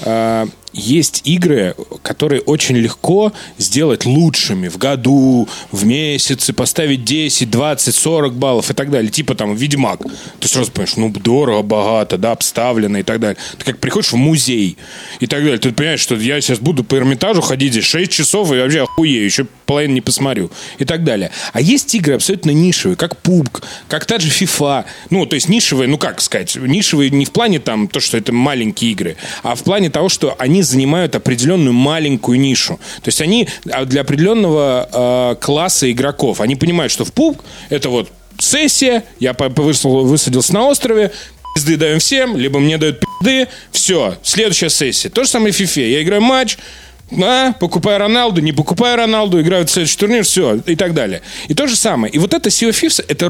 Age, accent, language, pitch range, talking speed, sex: 30-49, native, Russian, 130-190 Hz, 185 wpm, male